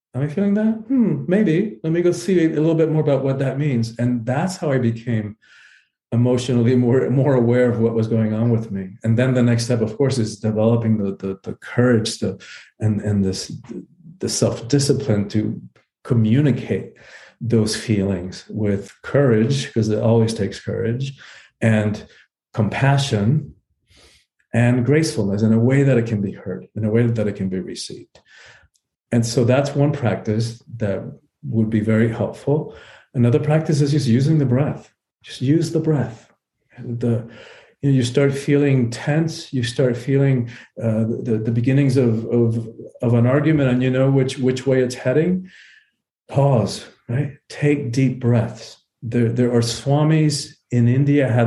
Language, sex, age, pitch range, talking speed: English, male, 40-59, 115-140 Hz, 165 wpm